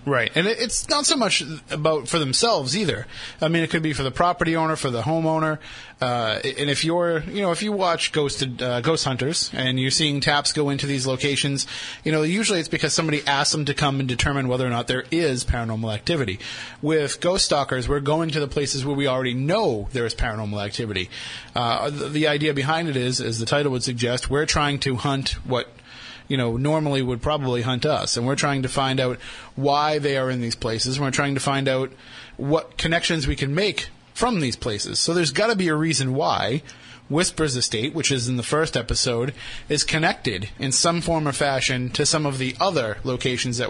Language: English